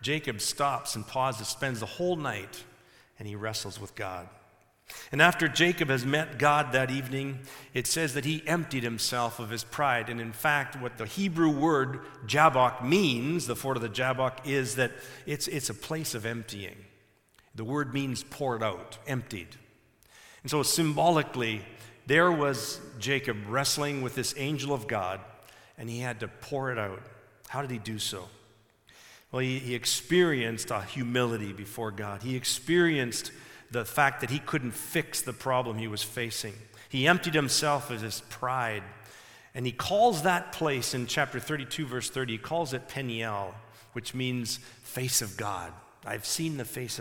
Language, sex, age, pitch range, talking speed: English, male, 50-69, 115-145 Hz, 170 wpm